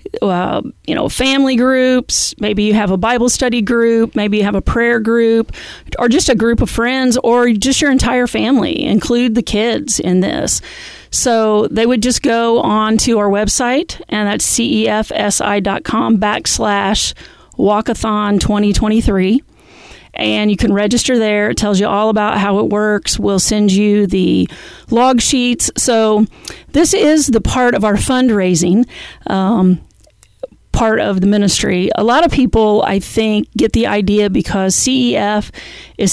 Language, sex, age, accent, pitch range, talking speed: English, female, 40-59, American, 205-240 Hz, 155 wpm